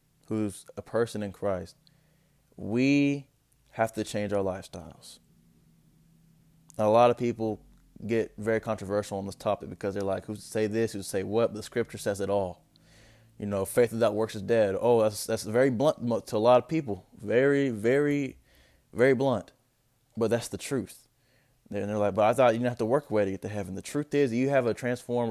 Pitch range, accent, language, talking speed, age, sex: 100-120 Hz, American, English, 200 wpm, 20-39, male